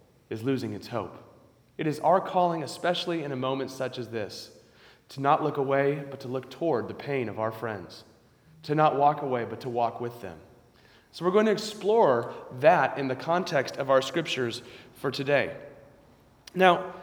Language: English